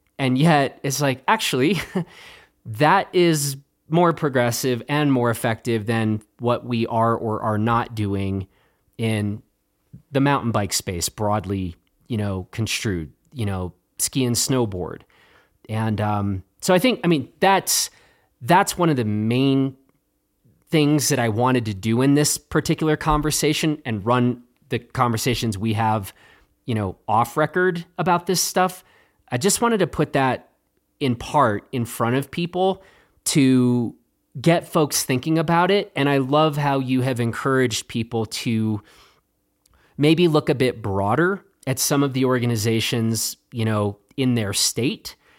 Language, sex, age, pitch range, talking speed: English, male, 30-49, 110-150 Hz, 150 wpm